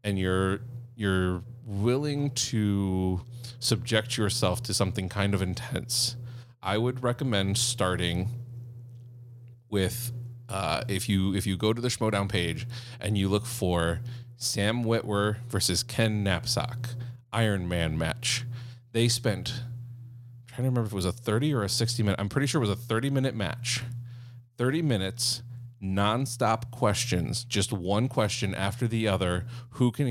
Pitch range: 100-120 Hz